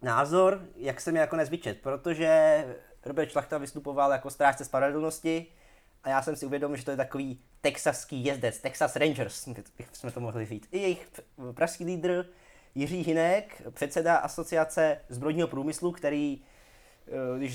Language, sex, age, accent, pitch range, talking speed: Czech, male, 20-39, native, 125-160 Hz, 140 wpm